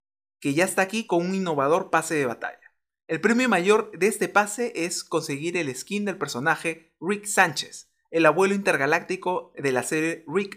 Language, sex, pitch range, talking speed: Spanish, male, 140-190 Hz, 175 wpm